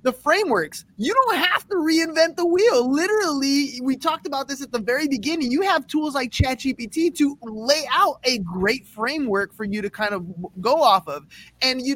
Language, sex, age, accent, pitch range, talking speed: English, male, 20-39, American, 200-275 Hz, 195 wpm